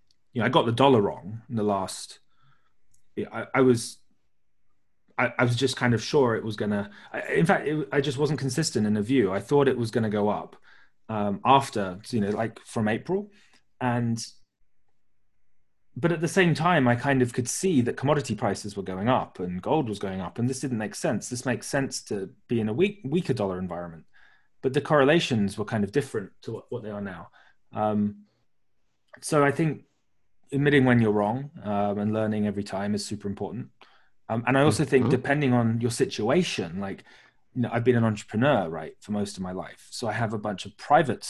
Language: English